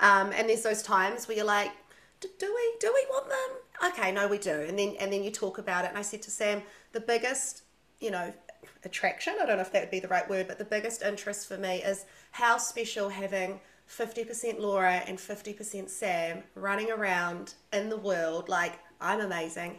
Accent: Australian